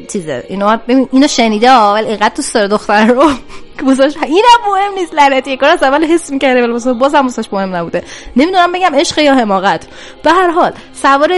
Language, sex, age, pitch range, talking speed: Persian, female, 20-39, 205-275 Hz, 175 wpm